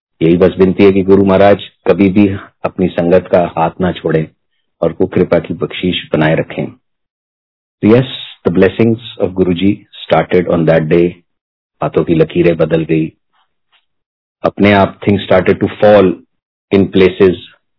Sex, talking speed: male, 95 wpm